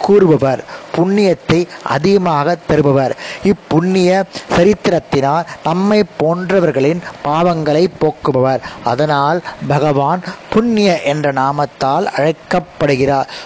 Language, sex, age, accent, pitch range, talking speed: Tamil, male, 20-39, native, 145-185 Hz, 60 wpm